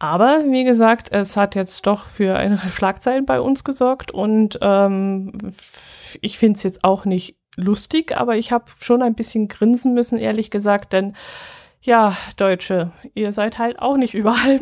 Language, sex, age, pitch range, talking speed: German, female, 20-39, 185-215 Hz, 170 wpm